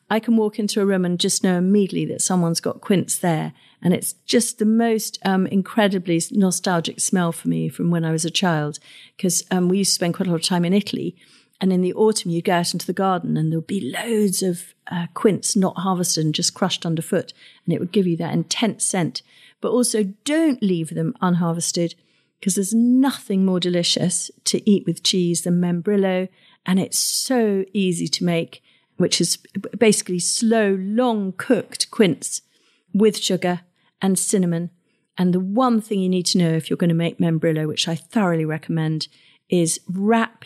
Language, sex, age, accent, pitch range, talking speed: English, female, 50-69, British, 170-205 Hz, 190 wpm